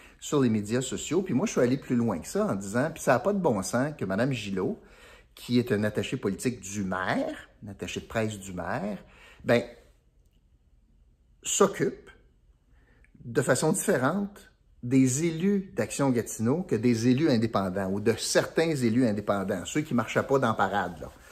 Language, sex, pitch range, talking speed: French, male, 100-135 Hz, 180 wpm